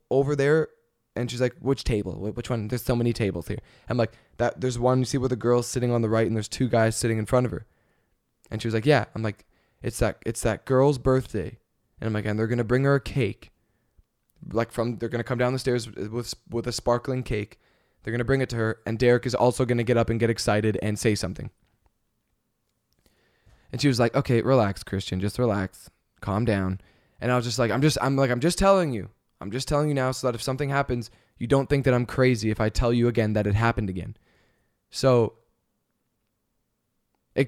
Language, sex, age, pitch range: English, male, 20-39, 110-135 Hz